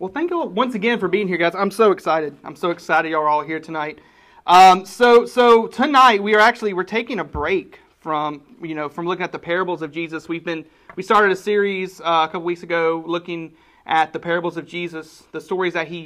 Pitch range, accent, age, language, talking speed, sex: 160-195 Hz, American, 30-49, English, 230 wpm, male